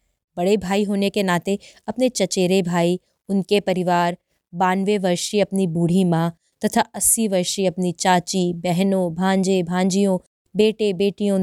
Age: 20-39